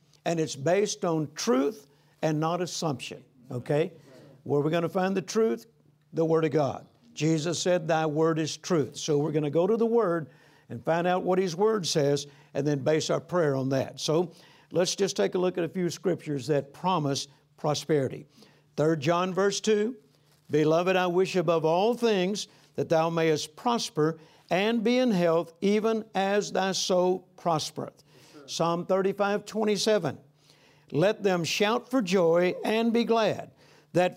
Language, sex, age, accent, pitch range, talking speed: English, male, 60-79, American, 155-200 Hz, 170 wpm